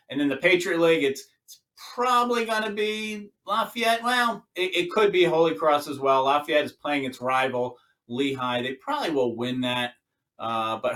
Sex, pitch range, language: male, 130-185 Hz, English